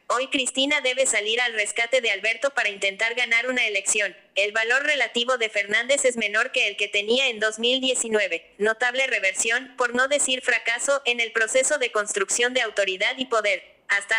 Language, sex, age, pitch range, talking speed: Spanish, female, 20-39, 210-260 Hz, 180 wpm